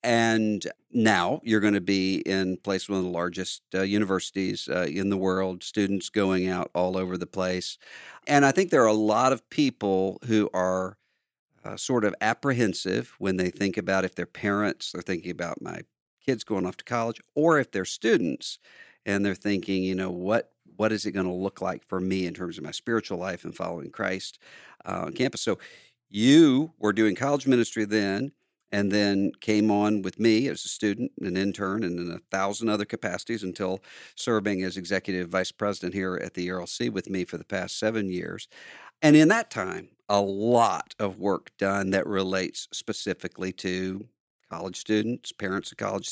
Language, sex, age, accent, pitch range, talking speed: English, male, 50-69, American, 95-110 Hz, 190 wpm